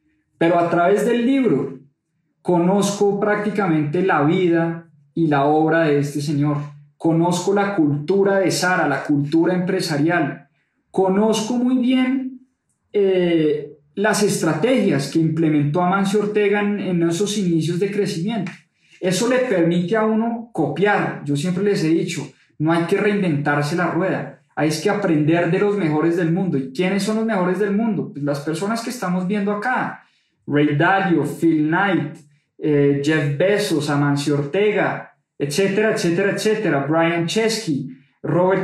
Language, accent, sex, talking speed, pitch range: Spanish, Colombian, male, 145 wpm, 155-200 Hz